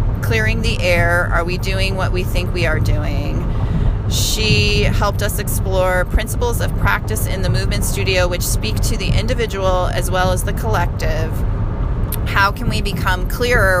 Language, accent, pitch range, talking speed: English, American, 95-110 Hz, 165 wpm